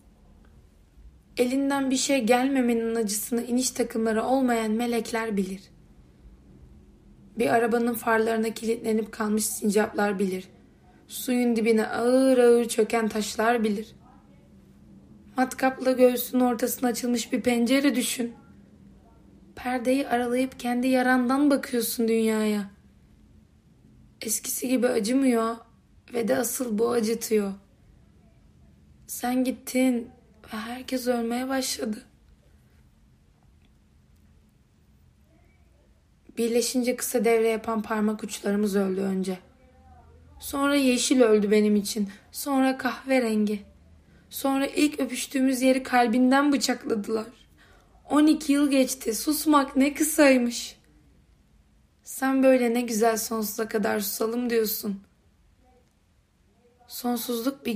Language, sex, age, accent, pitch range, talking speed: Turkish, female, 20-39, native, 215-255 Hz, 90 wpm